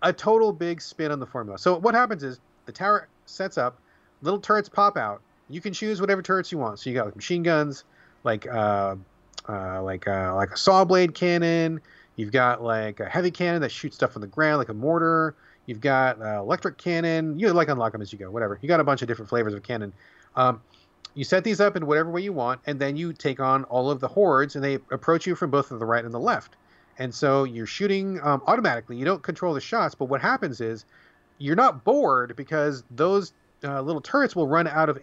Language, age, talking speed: English, 30-49, 230 wpm